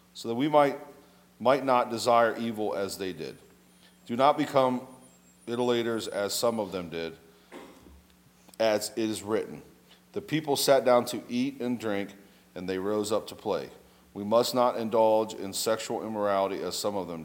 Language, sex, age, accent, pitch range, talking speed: English, male, 40-59, American, 90-120 Hz, 170 wpm